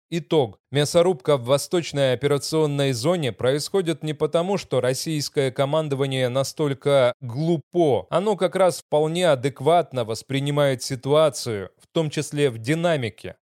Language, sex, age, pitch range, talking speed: Russian, male, 20-39, 130-165 Hz, 115 wpm